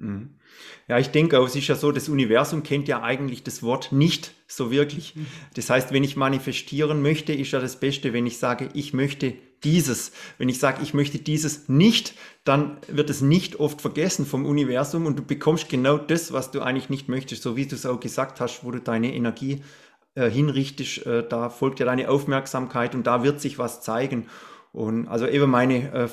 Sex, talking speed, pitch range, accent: male, 200 wpm, 125-150 Hz, German